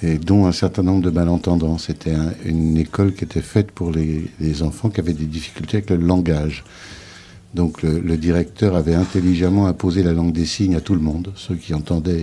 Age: 60-79